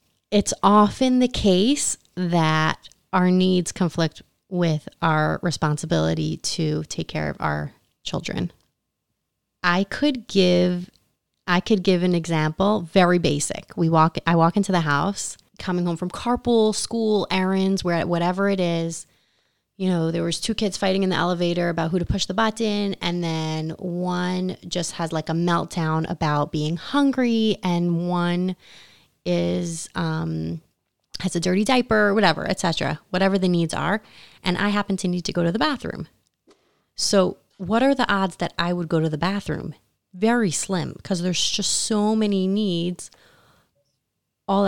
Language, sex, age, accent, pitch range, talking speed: English, female, 30-49, American, 165-200 Hz, 160 wpm